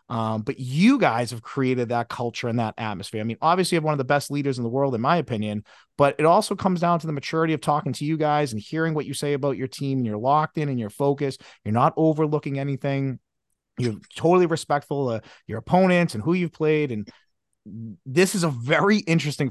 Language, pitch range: English, 115-150 Hz